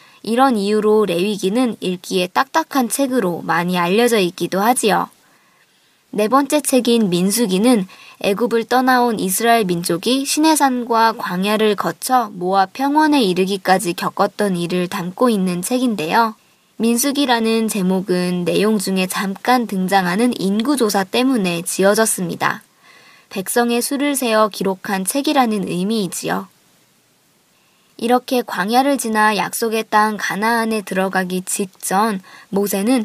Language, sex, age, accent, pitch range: Korean, male, 20-39, native, 190-250 Hz